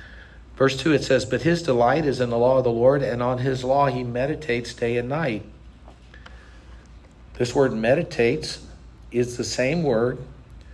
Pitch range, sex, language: 80-130 Hz, male, English